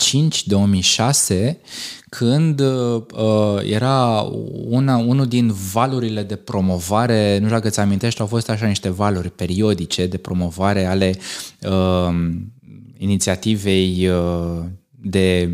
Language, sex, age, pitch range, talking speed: Romanian, male, 20-39, 95-115 Hz, 95 wpm